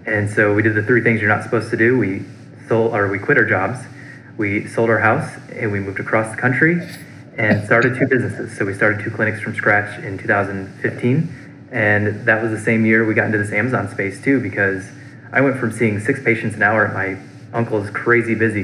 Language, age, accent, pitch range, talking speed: English, 20-39, American, 105-125 Hz, 220 wpm